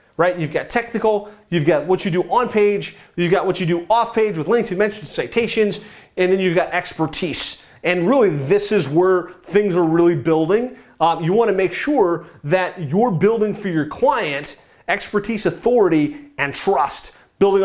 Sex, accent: male, American